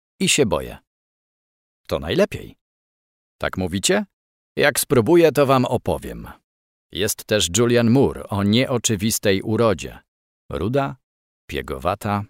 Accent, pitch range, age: native, 90-135 Hz, 40-59